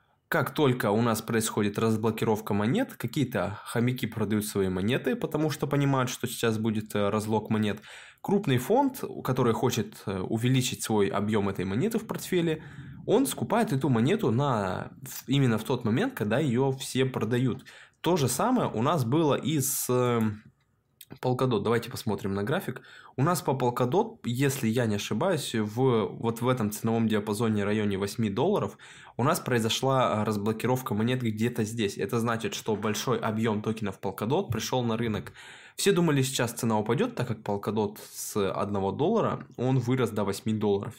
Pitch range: 105-130 Hz